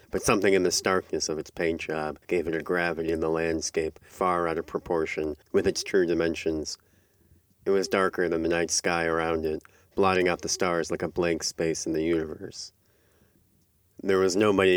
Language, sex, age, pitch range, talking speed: English, male, 30-49, 80-90 Hz, 190 wpm